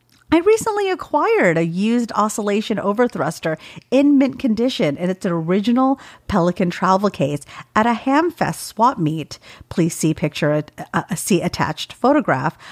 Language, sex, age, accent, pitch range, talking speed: English, female, 40-59, American, 170-245 Hz, 130 wpm